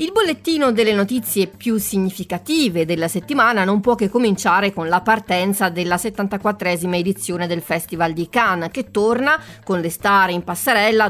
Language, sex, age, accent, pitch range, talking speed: Italian, female, 30-49, native, 180-230 Hz, 155 wpm